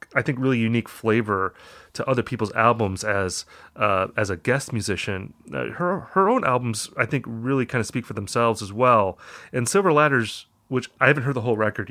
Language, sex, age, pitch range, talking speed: English, male, 30-49, 105-135 Hz, 195 wpm